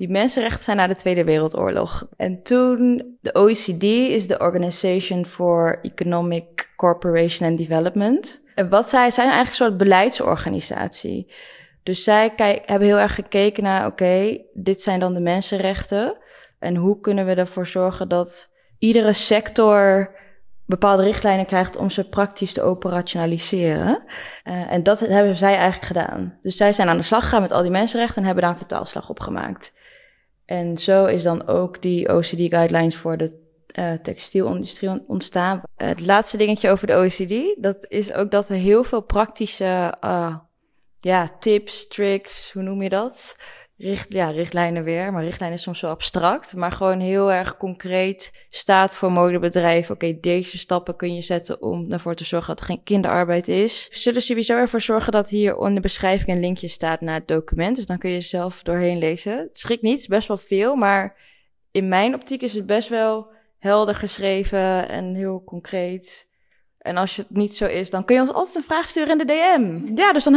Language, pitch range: Dutch, 180-215 Hz